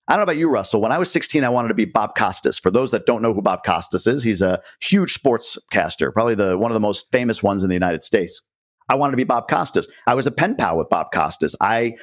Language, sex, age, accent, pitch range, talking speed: English, male, 50-69, American, 105-150 Hz, 285 wpm